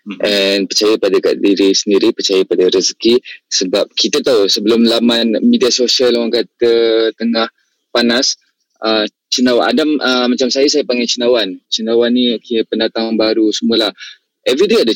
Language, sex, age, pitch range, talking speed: Malay, male, 20-39, 105-140 Hz, 155 wpm